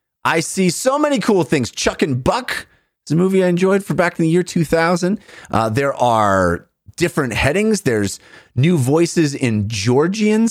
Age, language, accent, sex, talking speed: 30-49, English, American, male, 170 wpm